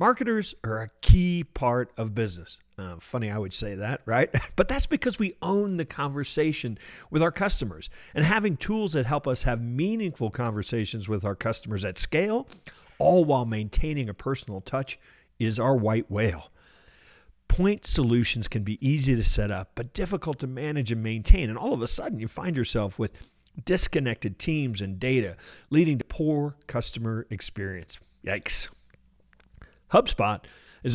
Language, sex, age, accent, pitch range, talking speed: English, male, 50-69, American, 105-150 Hz, 160 wpm